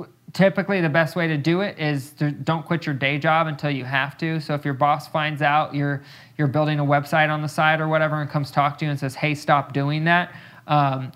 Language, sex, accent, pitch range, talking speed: English, male, American, 135-155 Hz, 255 wpm